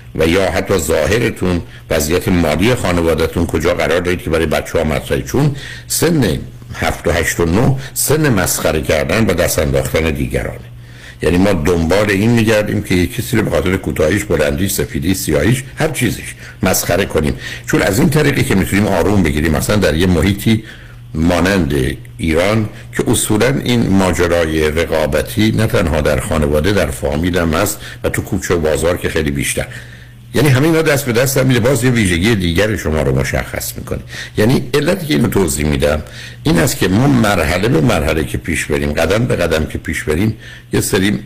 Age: 60-79